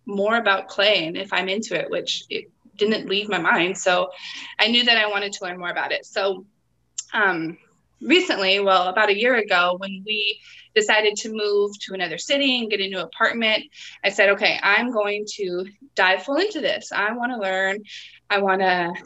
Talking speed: 200 wpm